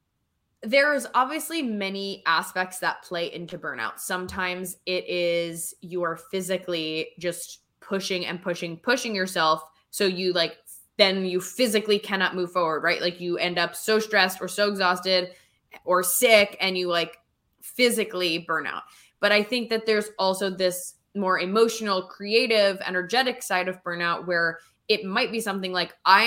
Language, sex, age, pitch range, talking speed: English, female, 10-29, 175-215 Hz, 155 wpm